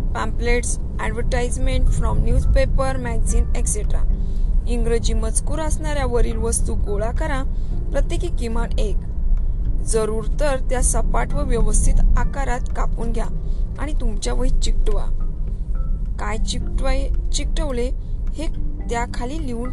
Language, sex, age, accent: Marathi, female, 20-39, native